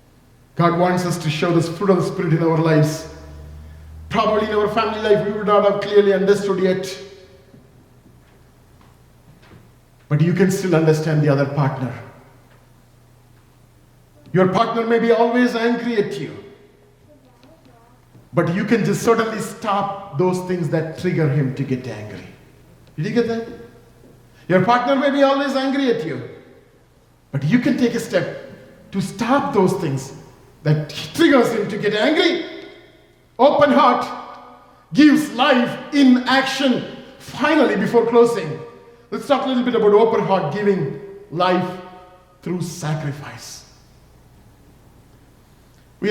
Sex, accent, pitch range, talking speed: male, Indian, 145-230 Hz, 135 wpm